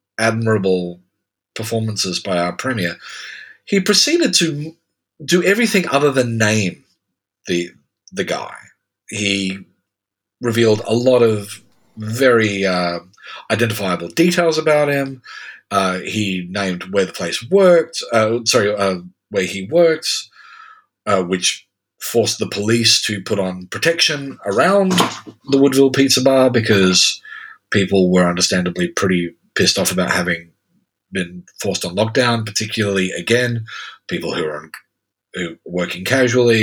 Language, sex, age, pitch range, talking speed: English, male, 40-59, 95-155 Hz, 125 wpm